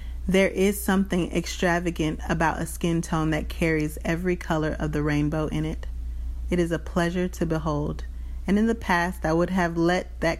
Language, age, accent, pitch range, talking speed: English, 30-49, American, 145-180 Hz, 185 wpm